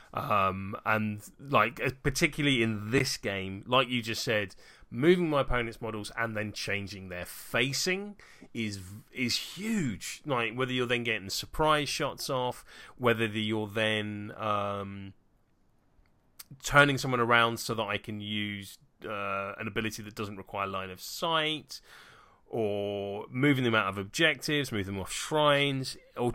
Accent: British